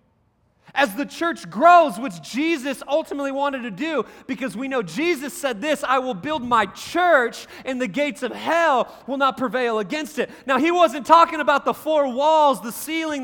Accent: American